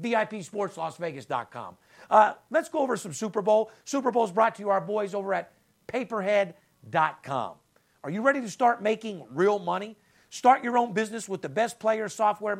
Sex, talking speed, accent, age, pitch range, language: male, 165 wpm, American, 50-69, 180-240 Hz, English